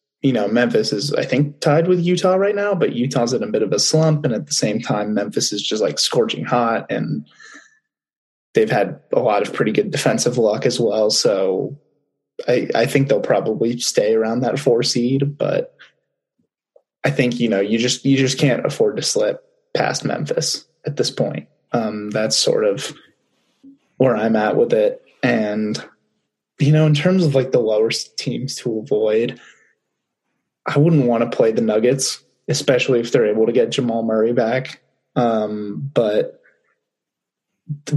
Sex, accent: male, American